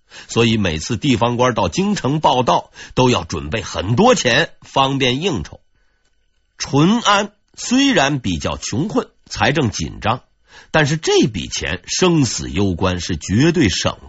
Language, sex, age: Chinese, male, 50-69